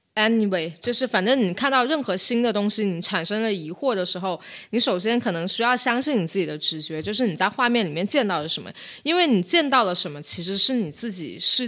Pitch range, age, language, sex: 180-245 Hz, 20-39, Chinese, female